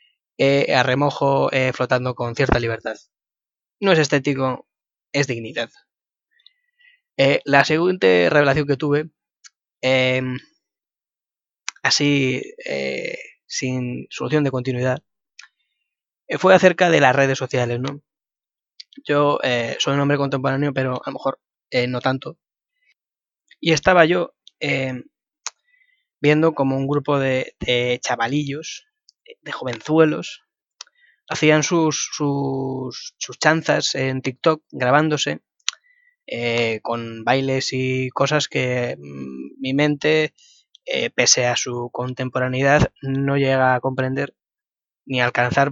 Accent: Spanish